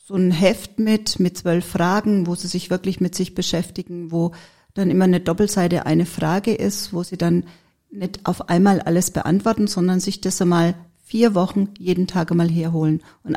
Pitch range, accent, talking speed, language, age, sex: 175-200 Hz, German, 185 wpm, German, 40-59, female